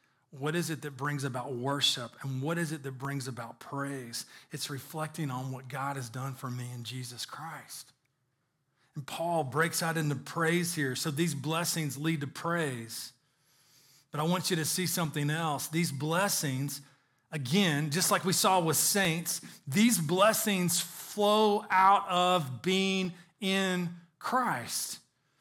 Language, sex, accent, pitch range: English, male, American, 140-185 Hz